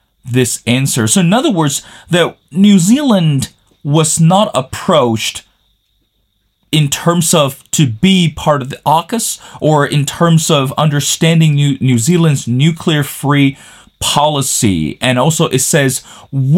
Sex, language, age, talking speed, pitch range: male, English, 30-49, 135 wpm, 125-165 Hz